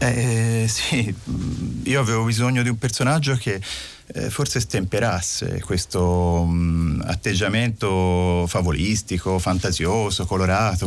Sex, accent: male, native